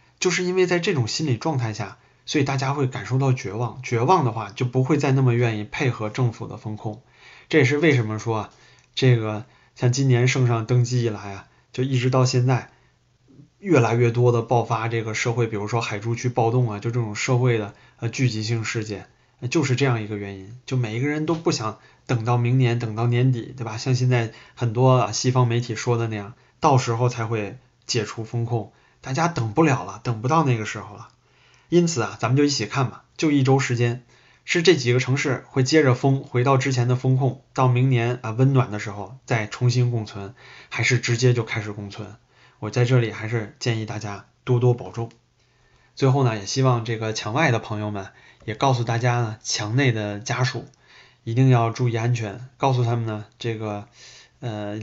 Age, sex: 20-39, male